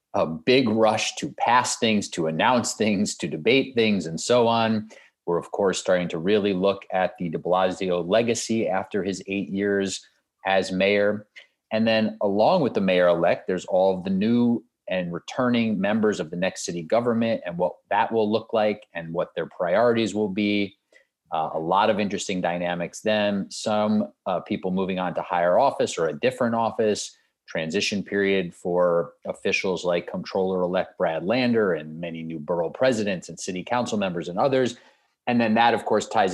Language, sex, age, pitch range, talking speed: English, male, 30-49, 90-110 Hz, 180 wpm